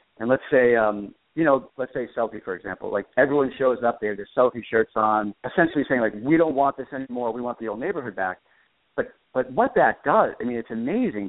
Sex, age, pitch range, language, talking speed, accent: male, 50-69, 105-130 Hz, English, 230 wpm, American